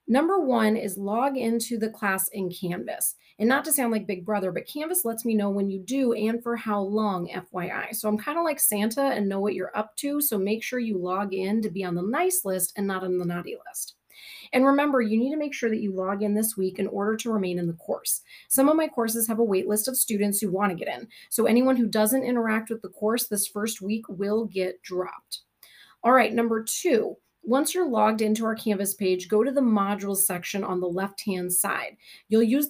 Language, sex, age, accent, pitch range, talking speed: English, female, 30-49, American, 195-245 Hz, 240 wpm